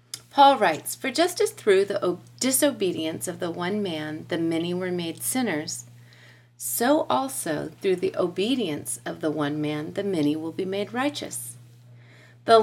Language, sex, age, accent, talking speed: English, female, 40-59, American, 155 wpm